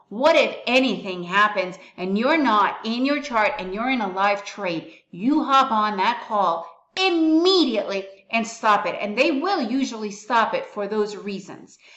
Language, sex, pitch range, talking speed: English, female, 205-265 Hz, 170 wpm